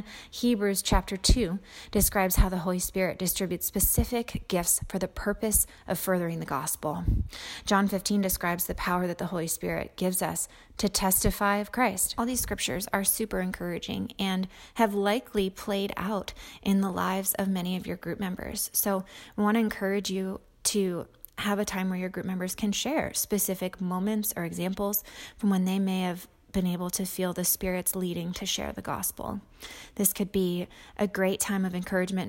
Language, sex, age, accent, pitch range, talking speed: English, female, 20-39, American, 180-205 Hz, 180 wpm